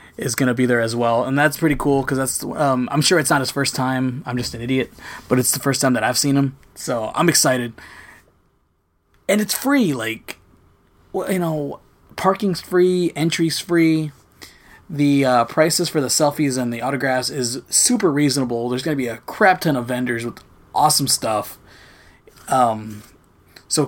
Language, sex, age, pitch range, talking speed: English, male, 20-39, 125-165 Hz, 185 wpm